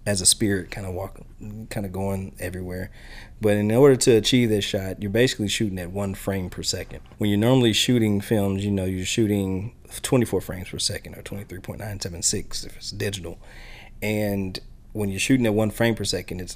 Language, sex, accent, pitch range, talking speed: English, male, American, 95-110 Hz, 190 wpm